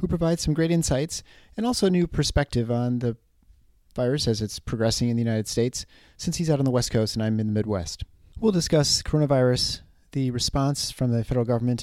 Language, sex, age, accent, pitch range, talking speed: English, male, 40-59, American, 105-140 Hz, 210 wpm